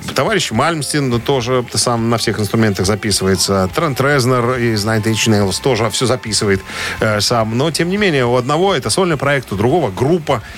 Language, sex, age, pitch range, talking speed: Russian, male, 40-59, 105-145 Hz, 170 wpm